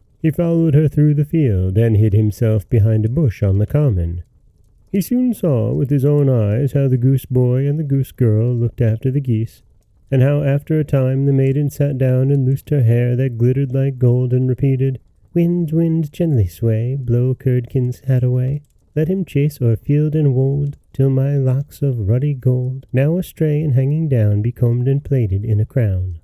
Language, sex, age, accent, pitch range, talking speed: English, male, 30-49, American, 110-145 Hz, 195 wpm